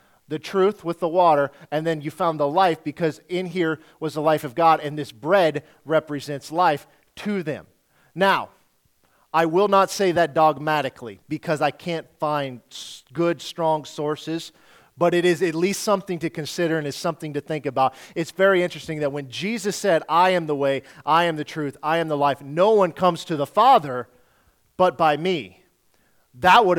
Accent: American